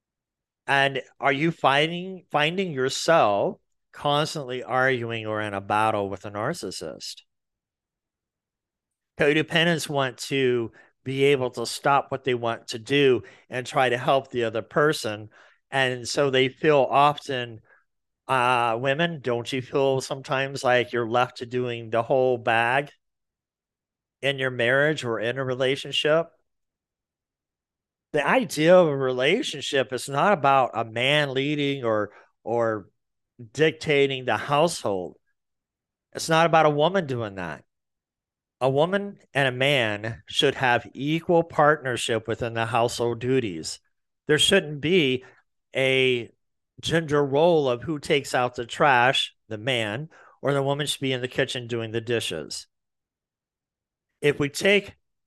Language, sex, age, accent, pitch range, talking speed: English, male, 50-69, American, 120-145 Hz, 135 wpm